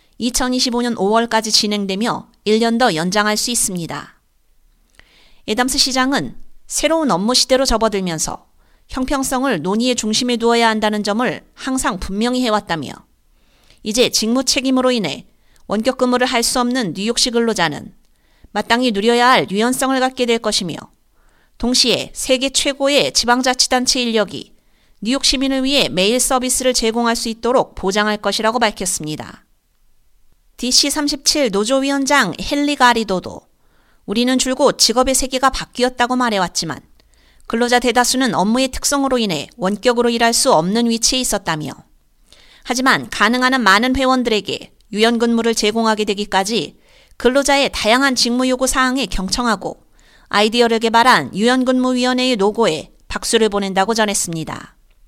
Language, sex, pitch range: Korean, female, 210-255 Hz